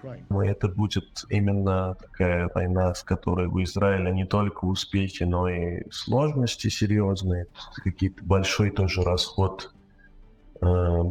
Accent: native